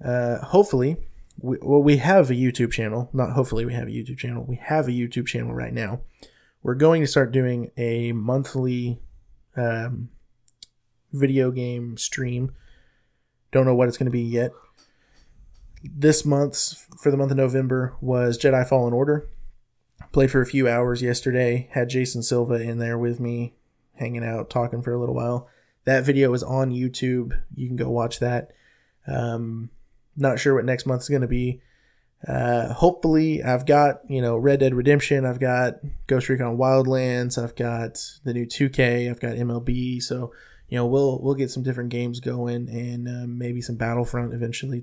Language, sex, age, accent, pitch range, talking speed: English, male, 20-39, American, 120-135 Hz, 175 wpm